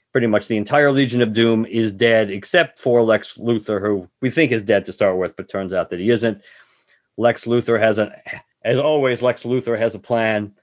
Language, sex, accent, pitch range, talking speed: English, male, American, 105-120 Hz, 210 wpm